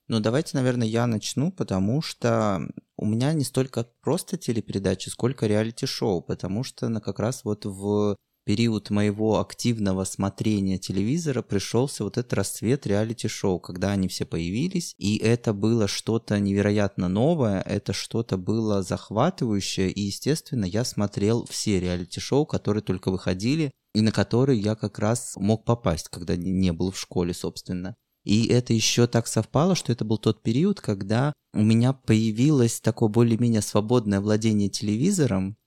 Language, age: Russian, 20-39